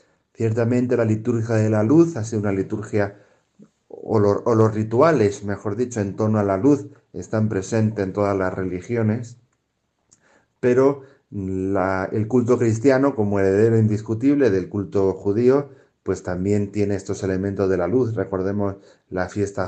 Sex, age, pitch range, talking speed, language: male, 40-59, 95-115 Hz, 145 wpm, Spanish